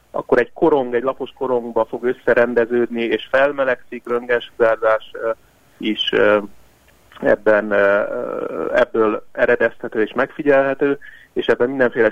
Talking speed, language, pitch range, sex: 100 wpm, Hungarian, 110-135 Hz, male